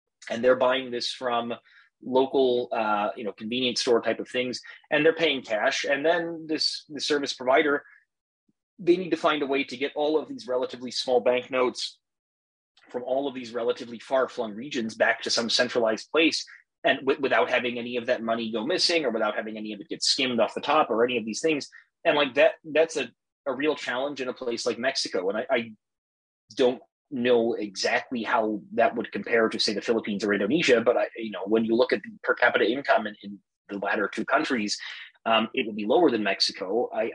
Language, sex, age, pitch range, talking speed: English, male, 30-49, 110-130 Hz, 215 wpm